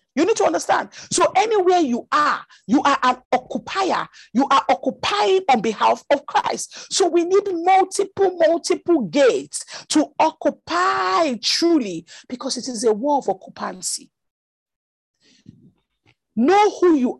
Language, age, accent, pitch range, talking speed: English, 50-69, Nigerian, 215-310 Hz, 135 wpm